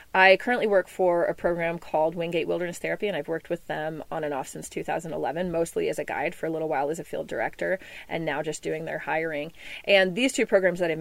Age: 30-49